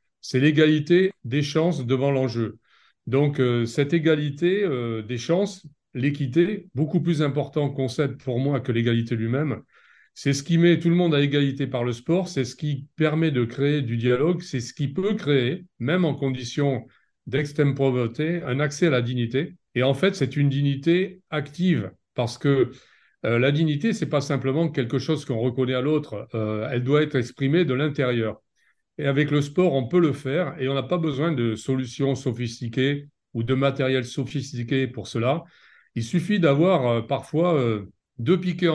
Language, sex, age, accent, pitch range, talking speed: French, male, 40-59, French, 125-160 Hz, 180 wpm